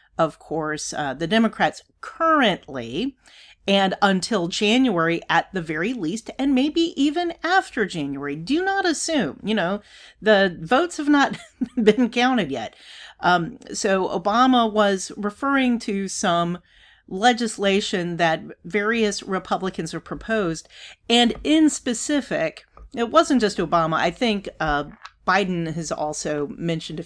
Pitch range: 170-245 Hz